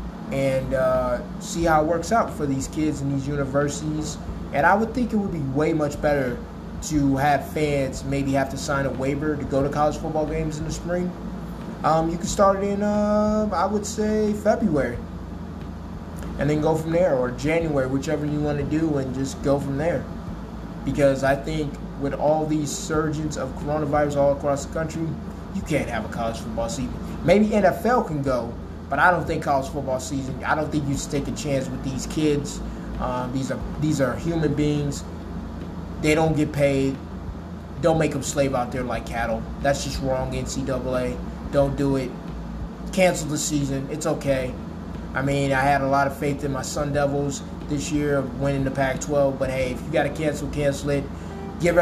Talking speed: 195 wpm